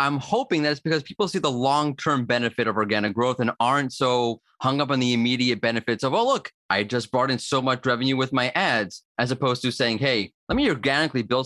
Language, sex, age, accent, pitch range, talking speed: English, male, 30-49, American, 120-155 Hz, 230 wpm